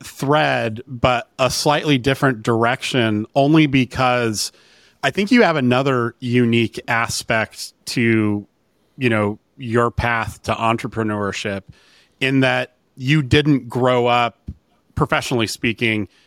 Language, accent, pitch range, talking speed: English, American, 110-130 Hz, 110 wpm